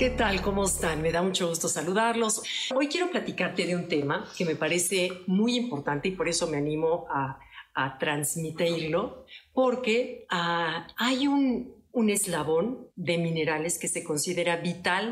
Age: 50-69